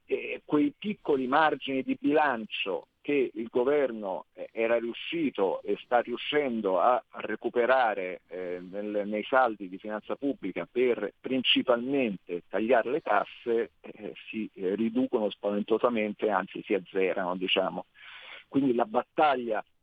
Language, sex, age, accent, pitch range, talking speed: Italian, male, 50-69, native, 105-135 Hz, 105 wpm